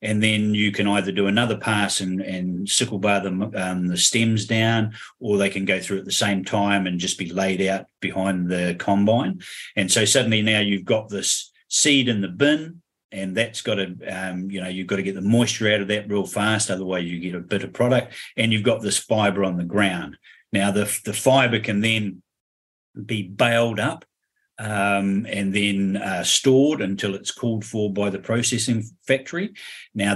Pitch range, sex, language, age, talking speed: 95-115 Hz, male, English, 40-59, 200 wpm